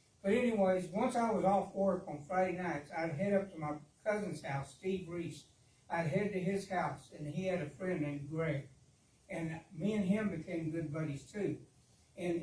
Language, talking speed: English, 195 wpm